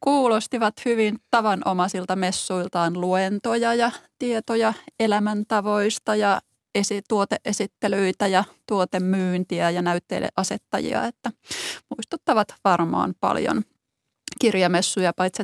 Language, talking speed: Finnish, 80 wpm